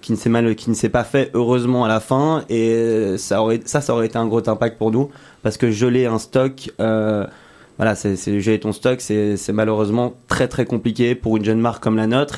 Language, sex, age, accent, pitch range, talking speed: French, male, 20-39, French, 110-125 Hz, 240 wpm